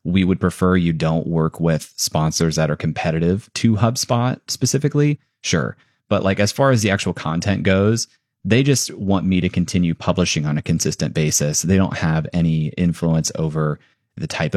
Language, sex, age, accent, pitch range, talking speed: English, male, 30-49, American, 80-100 Hz, 175 wpm